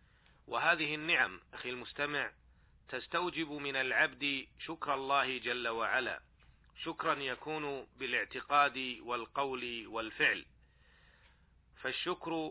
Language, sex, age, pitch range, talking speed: Arabic, male, 40-59, 125-145 Hz, 80 wpm